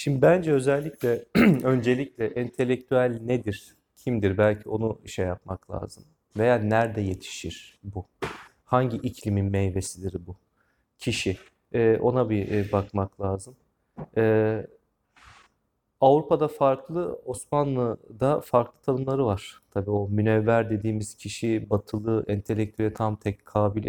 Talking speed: 110 wpm